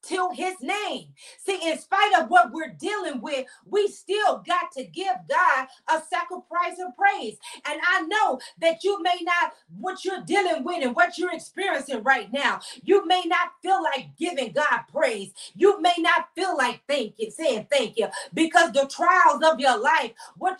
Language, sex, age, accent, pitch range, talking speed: English, female, 40-59, American, 285-360 Hz, 185 wpm